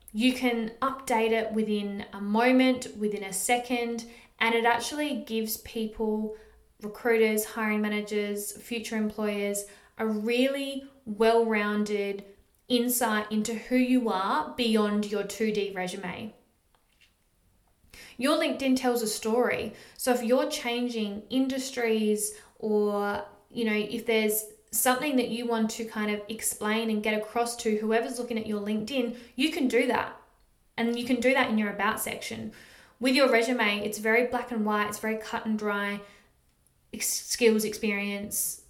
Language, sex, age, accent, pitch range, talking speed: English, female, 20-39, Australian, 210-240 Hz, 145 wpm